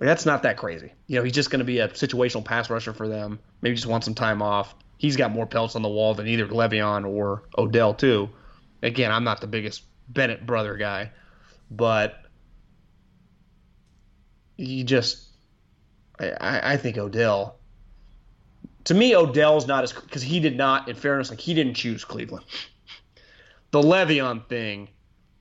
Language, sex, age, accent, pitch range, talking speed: English, male, 20-39, American, 110-175 Hz, 175 wpm